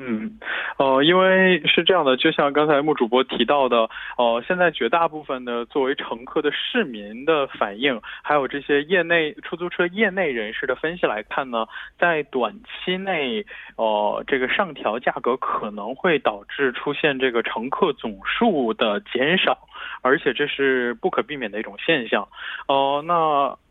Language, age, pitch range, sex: Korean, 20-39, 130-175 Hz, male